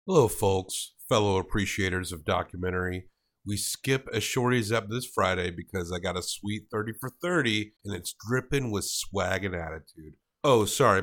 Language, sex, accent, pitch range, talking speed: English, male, American, 95-125 Hz, 165 wpm